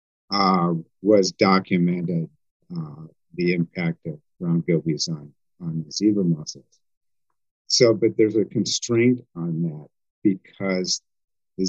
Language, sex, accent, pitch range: English, male, American, 85-110 Hz